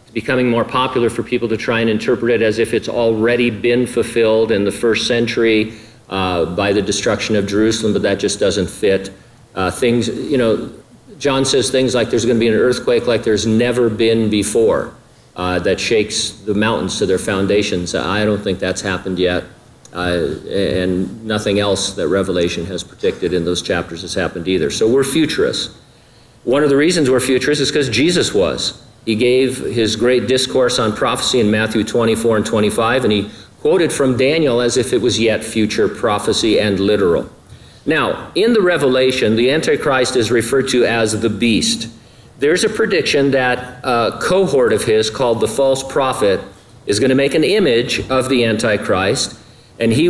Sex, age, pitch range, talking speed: male, 50-69, 105-130 Hz, 180 wpm